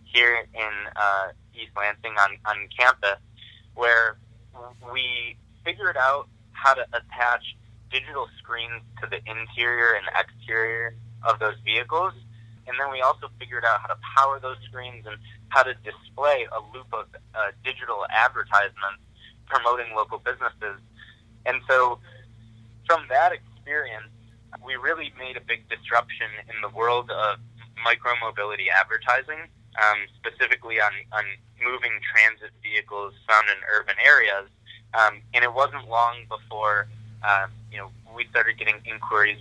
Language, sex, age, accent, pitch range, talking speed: English, male, 20-39, American, 110-120 Hz, 135 wpm